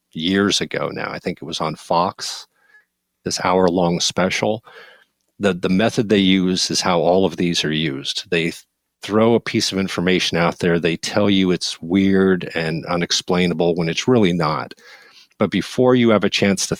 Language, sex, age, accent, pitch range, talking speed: English, male, 40-59, American, 85-100 Hz, 180 wpm